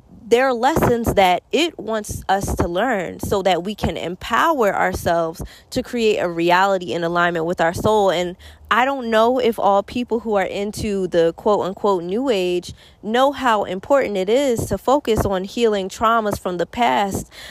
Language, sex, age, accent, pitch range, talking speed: English, female, 20-39, American, 180-240 Hz, 175 wpm